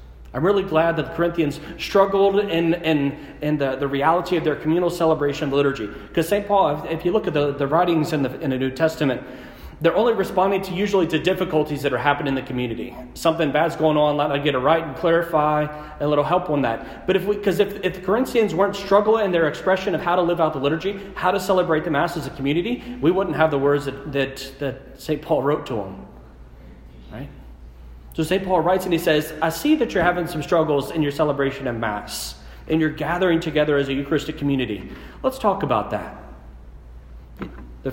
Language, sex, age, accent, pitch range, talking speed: English, male, 40-59, American, 135-170 Hz, 220 wpm